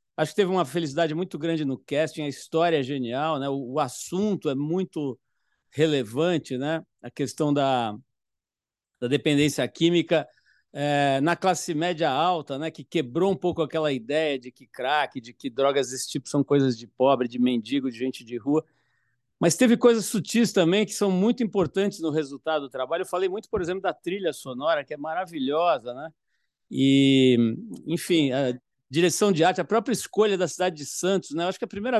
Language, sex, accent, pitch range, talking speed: Portuguese, male, Brazilian, 135-180 Hz, 190 wpm